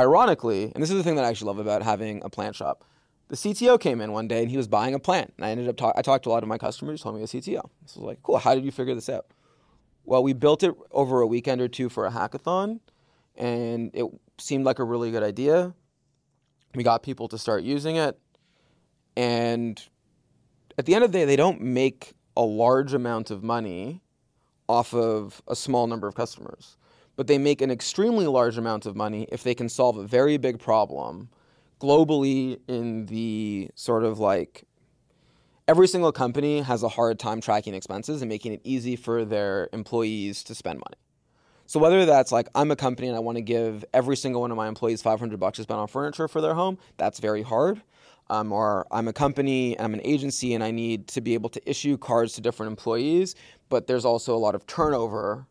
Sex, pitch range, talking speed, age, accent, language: male, 110-140 Hz, 220 wpm, 20-39, American, English